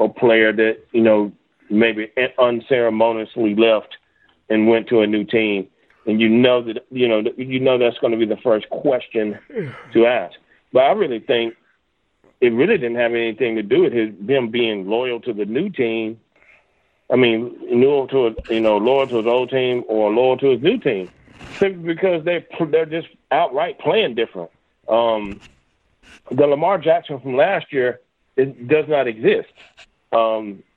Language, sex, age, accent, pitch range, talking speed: English, male, 40-59, American, 110-140 Hz, 175 wpm